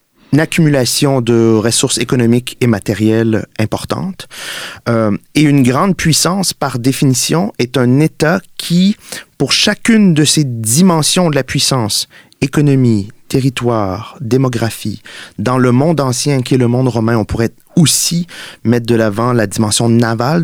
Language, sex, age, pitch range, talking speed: French, male, 30-49, 105-135 Hz, 140 wpm